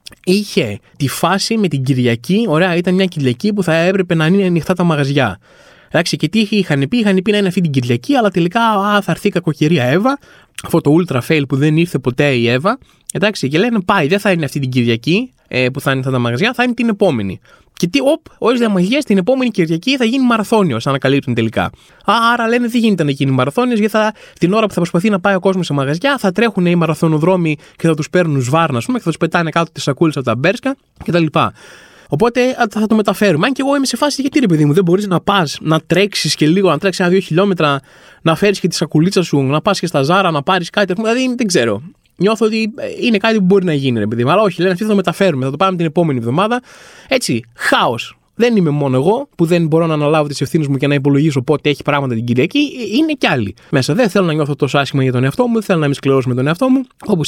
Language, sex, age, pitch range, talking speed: Greek, male, 20-39, 140-205 Hz, 240 wpm